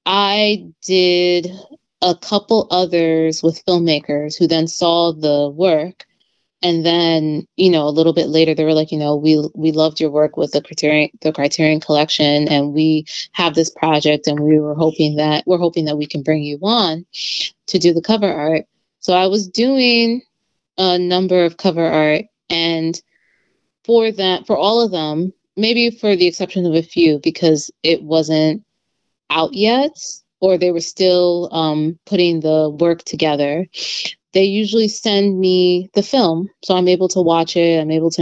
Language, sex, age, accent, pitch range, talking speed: English, female, 20-39, American, 155-185 Hz, 175 wpm